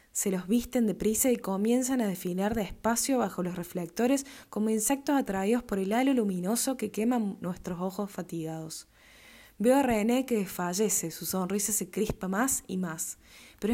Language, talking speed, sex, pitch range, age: Spanish, 160 wpm, female, 180-235 Hz, 20-39